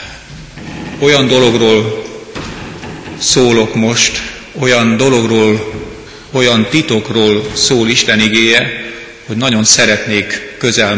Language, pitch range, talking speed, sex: Hungarian, 110-120 Hz, 80 wpm, male